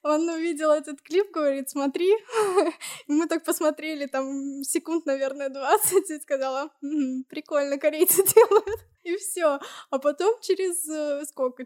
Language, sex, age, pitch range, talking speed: Russian, female, 10-29, 245-325 Hz, 130 wpm